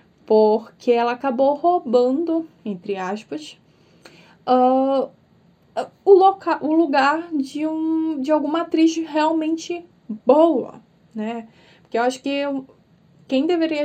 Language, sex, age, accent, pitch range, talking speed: Portuguese, female, 10-29, Brazilian, 225-295 Hz, 95 wpm